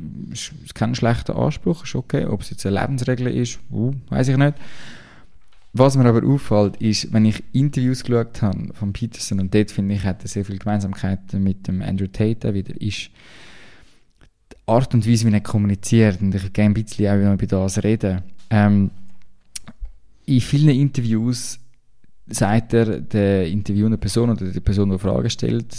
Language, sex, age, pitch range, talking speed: German, male, 20-39, 100-115 Hz, 175 wpm